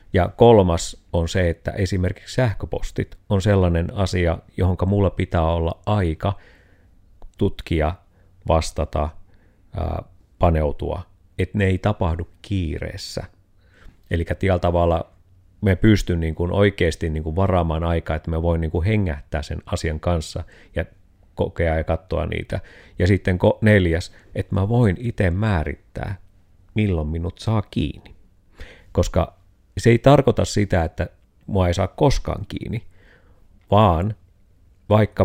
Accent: native